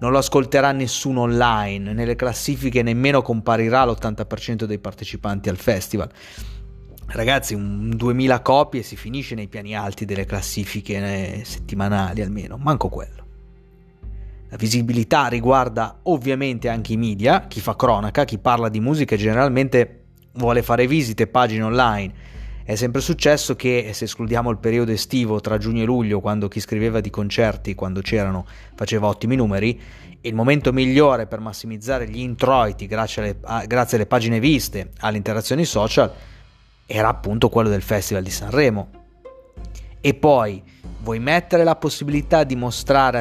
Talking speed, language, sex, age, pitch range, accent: 145 wpm, Italian, male, 30-49, 105-130 Hz, native